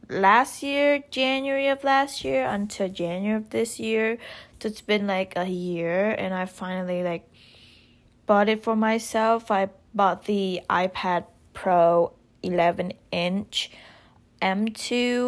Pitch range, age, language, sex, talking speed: 180-220 Hz, 20-39, English, female, 130 wpm